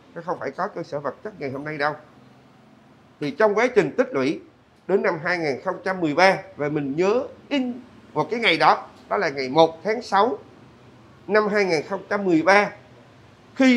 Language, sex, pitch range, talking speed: Vietnamese, male, 135-210 Hz, 165 wpm